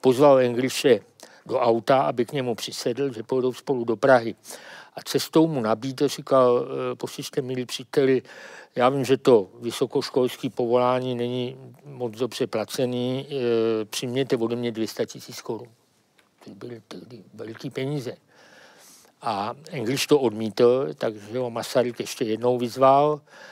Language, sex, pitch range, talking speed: Czech, male, 120-145 Hz, 135 wpm